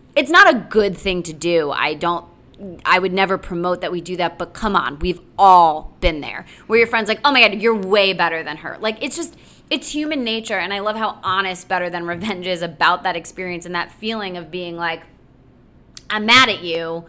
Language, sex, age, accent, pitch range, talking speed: English, female, 20-39, American, 170-215 Hz, 225 wpm